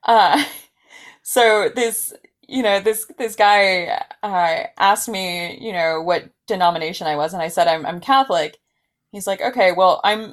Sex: female